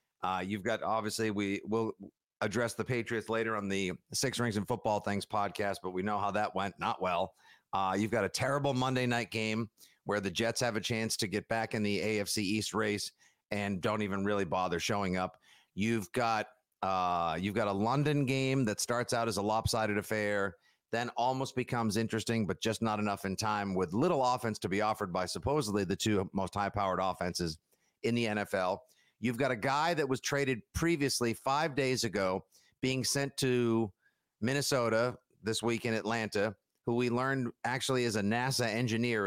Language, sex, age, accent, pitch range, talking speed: English, male, 50-69, American, 105-130 Hz, 185 wpm